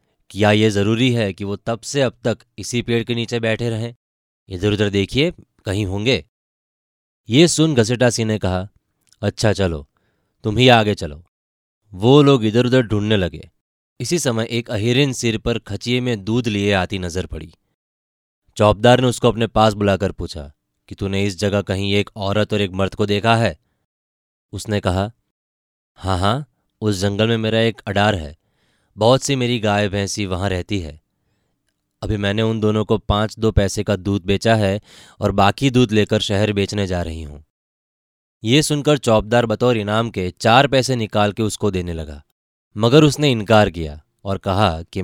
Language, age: Hindi, 20-39